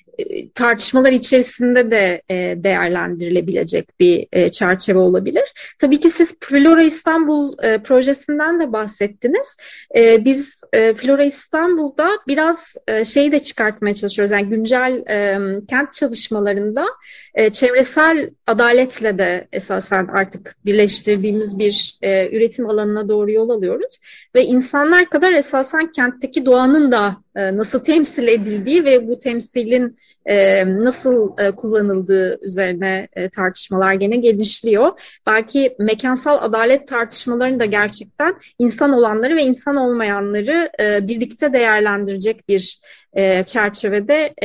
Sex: female